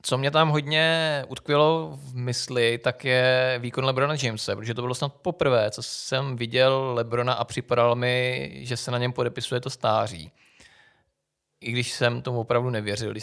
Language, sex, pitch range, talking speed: Czech, male, 120-135 Hz, 170 wpm